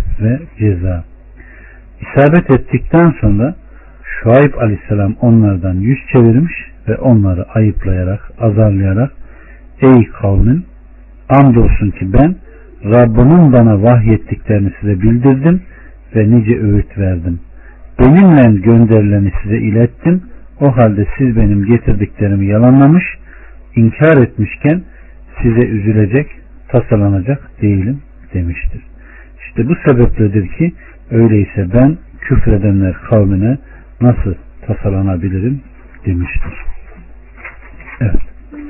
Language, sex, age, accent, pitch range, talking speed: Turkish, male, 60-79, native, 100-125 Hz, 90 wpm